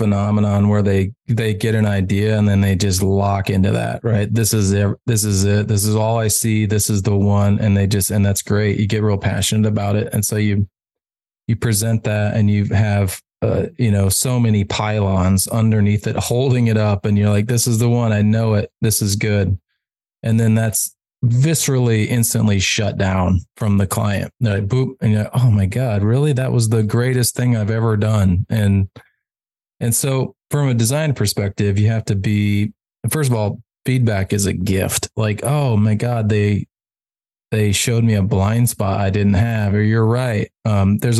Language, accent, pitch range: English, American, 100-115 Hz